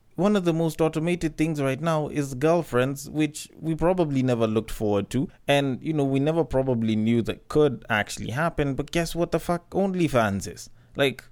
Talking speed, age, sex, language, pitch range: 195 wpm, 20-39, male, English, 115-155 Hz